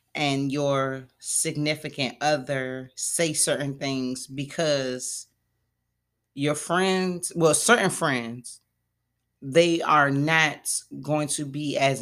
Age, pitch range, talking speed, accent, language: 30-49, 130-165 Hz, 100 wpm, American, English